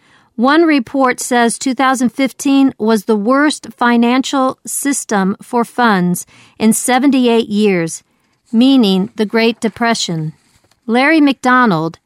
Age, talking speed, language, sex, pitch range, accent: 50-69, 100 wpm, English, female, 205-260 Hz, American